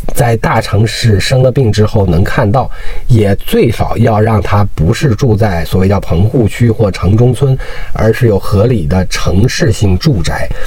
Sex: male